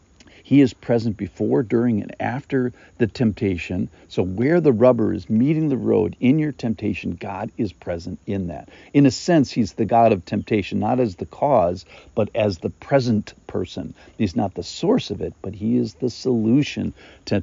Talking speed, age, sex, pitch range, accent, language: 185 wpm, 50-69, male, 100-125 Hz, American, English